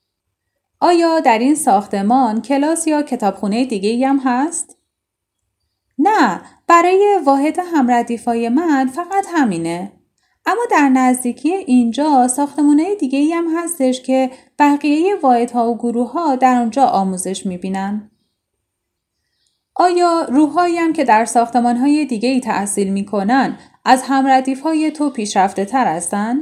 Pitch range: 215-295 Hz